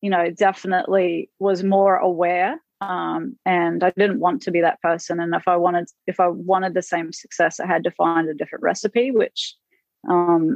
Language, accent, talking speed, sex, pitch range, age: English, Australian, 195 wpm, female, 170-190 Hz, 30-49